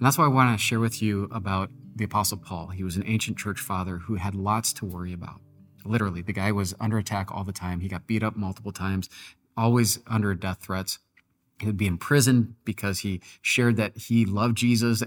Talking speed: 225 wpm